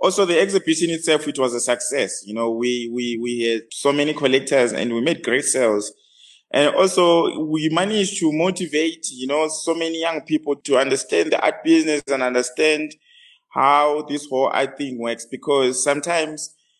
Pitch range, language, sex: 130-175 Hz, English, male